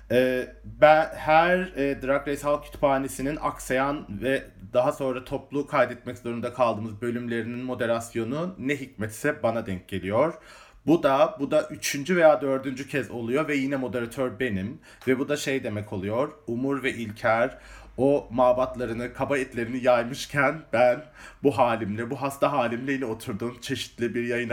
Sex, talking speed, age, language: male, 145 wpm, 30-49, Turkish